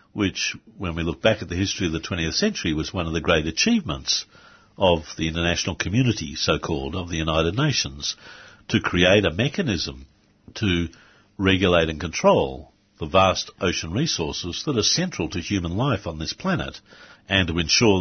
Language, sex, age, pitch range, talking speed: English, male, 60-79, 80-105 Hz, 170 wpm